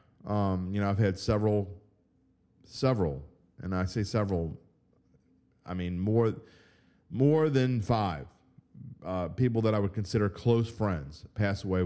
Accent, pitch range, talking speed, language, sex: American, 95-125 Hz, 135 wpm, English, male